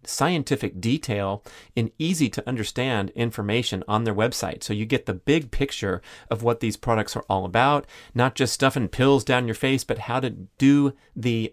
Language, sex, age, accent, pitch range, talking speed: English, male, 40-59, American, 115-150 Hz, 180 wpm